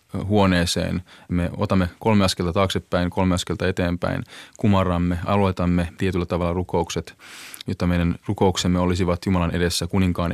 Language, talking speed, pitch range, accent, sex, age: Finnish, 120 wpm, 90-105 Hz, native, male, 20-39